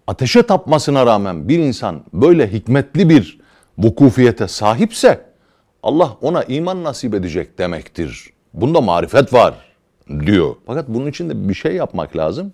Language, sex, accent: Turkish, male, native